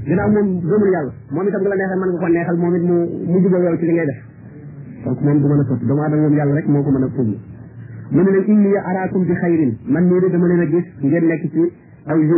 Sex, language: male, French